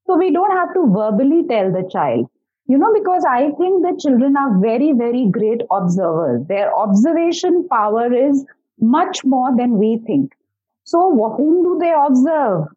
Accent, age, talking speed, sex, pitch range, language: Indian, 30-49, 165 wpm, female, 220-310 Hz, English